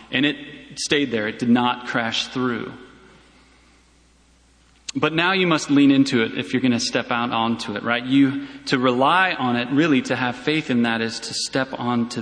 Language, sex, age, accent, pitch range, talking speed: English, male, 30-49, American, 115-145 Hz, 195 wpm